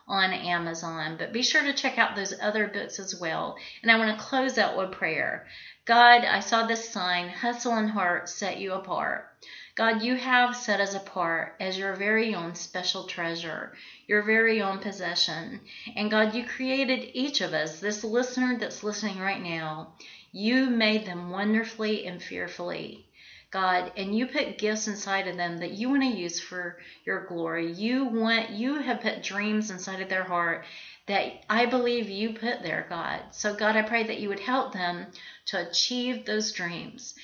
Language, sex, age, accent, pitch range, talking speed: English, female, 40-59, American, 185-230 Hz, 180 wpm